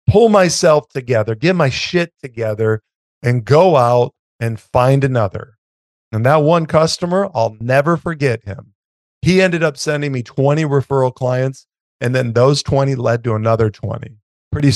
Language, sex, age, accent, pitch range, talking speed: English, male, 40-59, American, 115-140 Hz, 155 wpm